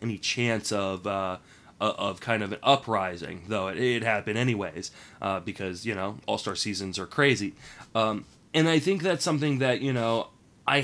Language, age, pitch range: English, 20-39, 105-135 Hz